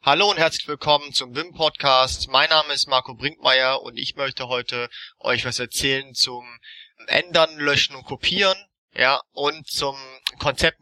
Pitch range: 130-155 Hz